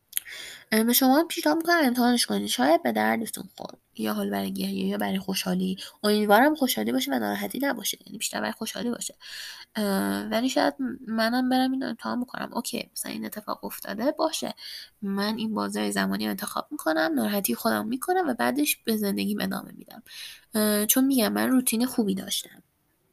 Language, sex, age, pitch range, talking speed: Persian, female, 10-29, 195-245 Hz, 160 wpm